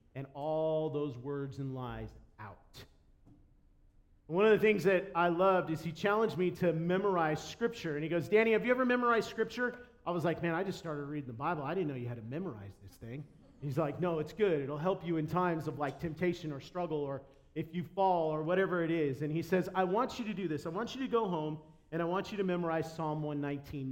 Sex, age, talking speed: male, 40-59, 240 wpm